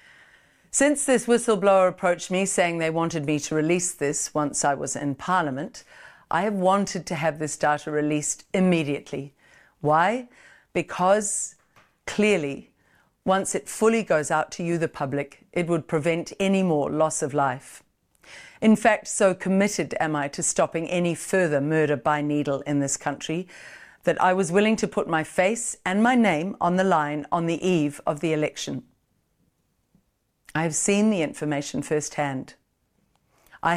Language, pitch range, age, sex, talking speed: English, 150-195 Hz, 50-69, female, 160 wpm